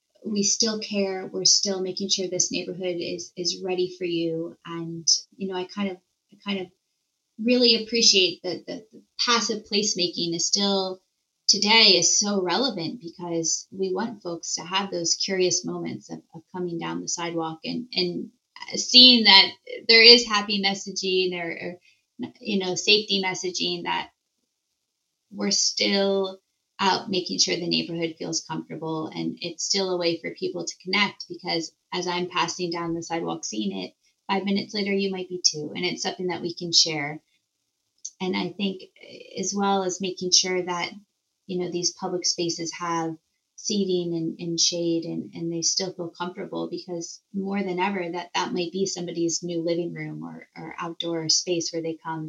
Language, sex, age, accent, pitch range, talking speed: English, female, 20-39, American, 165-195 Hz, 170 wpm